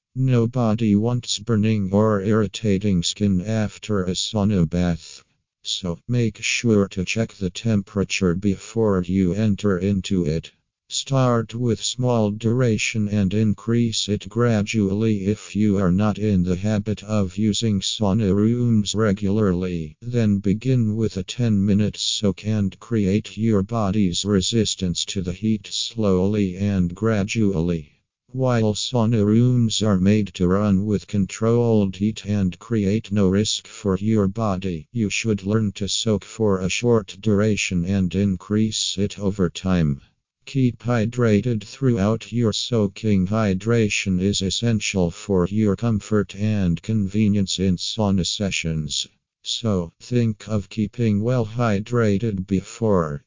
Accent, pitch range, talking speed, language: American, 95-110 Hz, 130 wpm, English